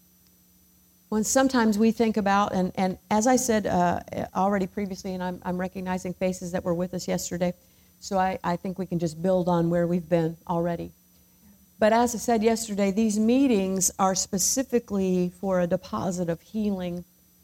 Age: 50-69